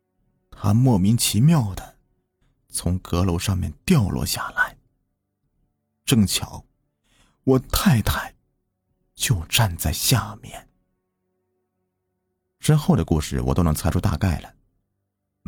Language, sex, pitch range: Chinese, male, 85-110 Hz